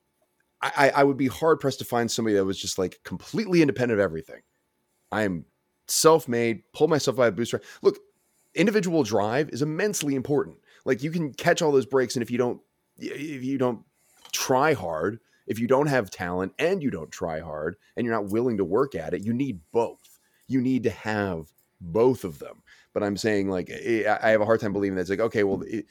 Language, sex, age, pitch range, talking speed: English, male, 30-49, 90-130 Hz, 205 wpm